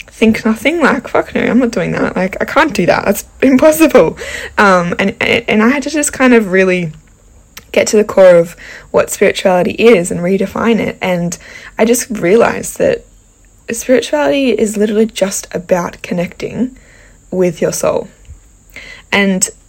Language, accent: English, Australian